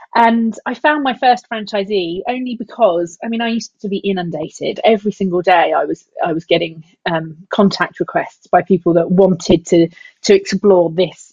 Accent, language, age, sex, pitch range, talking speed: British, English, 30-49, female, 180-230 Hz, 180 wpm